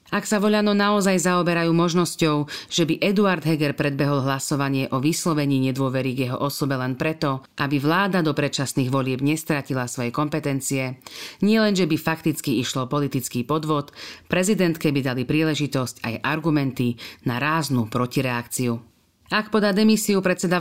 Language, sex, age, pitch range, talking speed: Slovak, female, 40-59, 130-175 Hz, 140 wpm